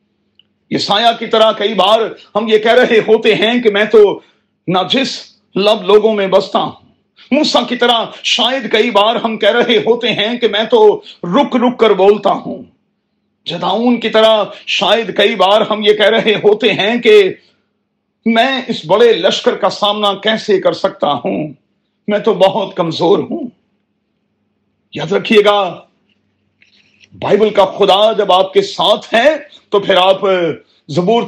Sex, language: male, Urdu